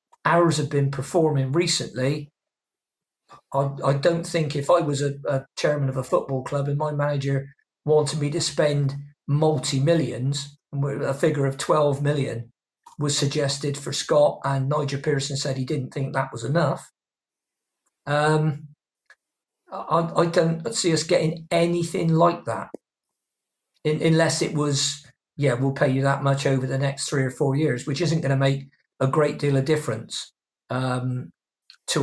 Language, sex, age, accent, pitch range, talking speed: English, male, 40-59, British, 140-165 Hz, 160 wpm